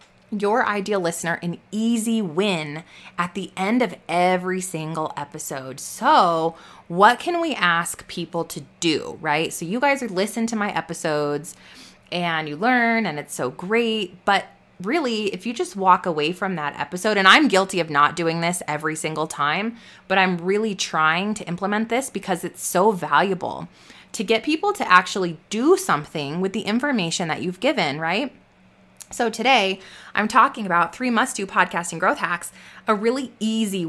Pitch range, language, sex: 175-230 Hz, English, female